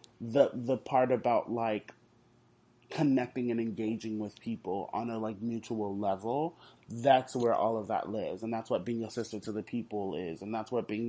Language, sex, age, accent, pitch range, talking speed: English, male, 20-39, American, 110-120 Hz, 190 wpm